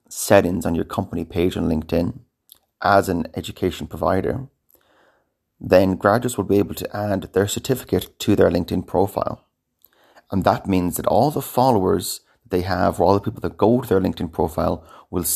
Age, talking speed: 30-49, 170 wpm